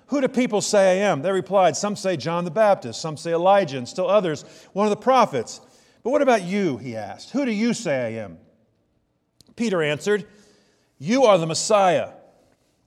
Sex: male